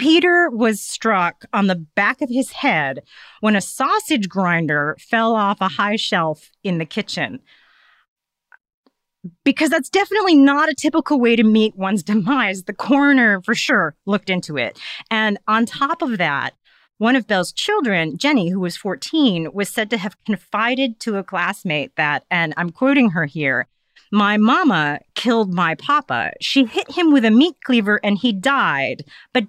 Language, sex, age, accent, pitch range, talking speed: English, female, 40-59, American, 185-265 Hz, 165 wpm